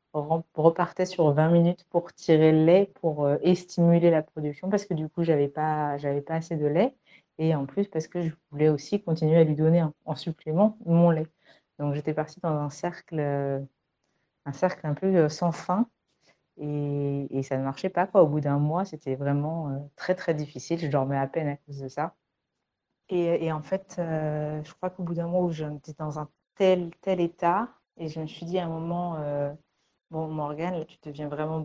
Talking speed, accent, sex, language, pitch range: 210 wpm, French, female, French, 150-170 Hz